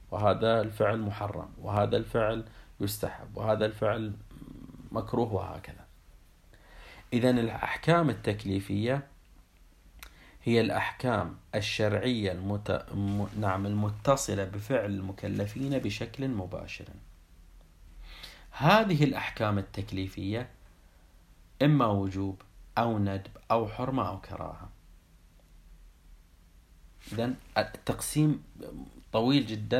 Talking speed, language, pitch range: 75 wpm, Arabic, 90-115 Hz